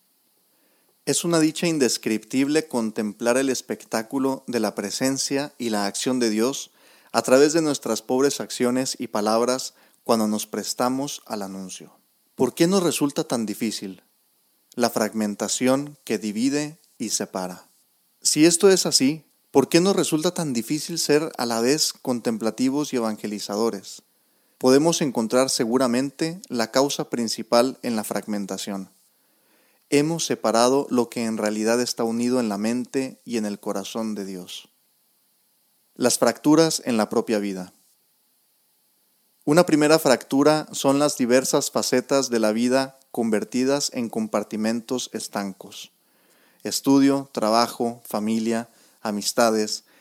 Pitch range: 110-140 Hz